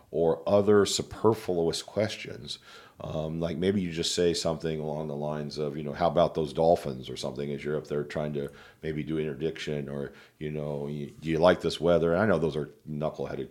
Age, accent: 50-69, American